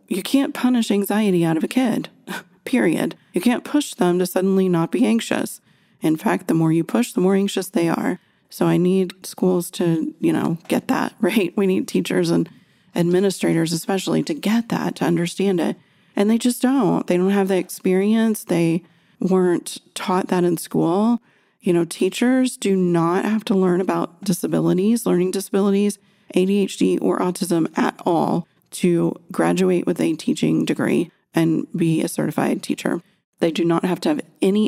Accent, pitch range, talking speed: American, 170-200 Hz, 175 wpm